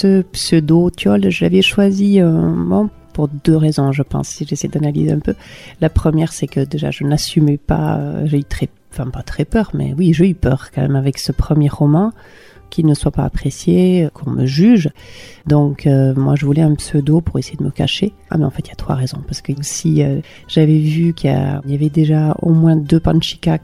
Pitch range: 140-165 Hz